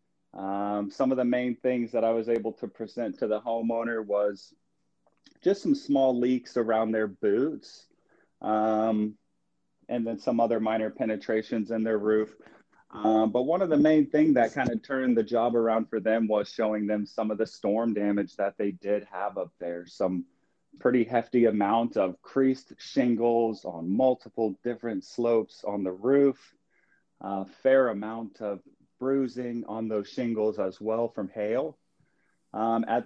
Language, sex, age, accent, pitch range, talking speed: English, male, 30-49, American, 105-120 Hz, 165 wpm